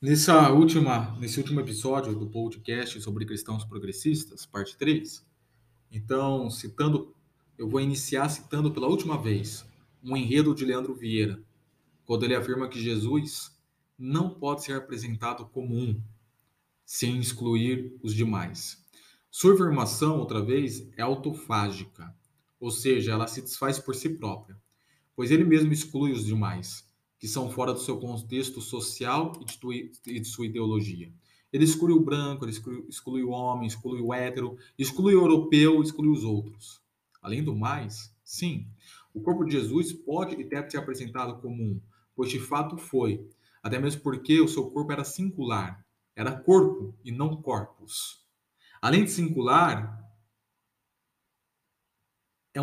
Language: Portuguese